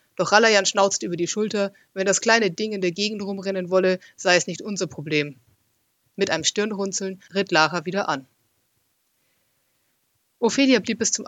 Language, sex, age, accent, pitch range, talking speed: German, female, 30-49, German, 155-195 Hz, 165 wpm